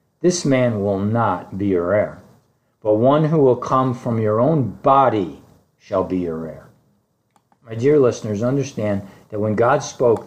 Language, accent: English, American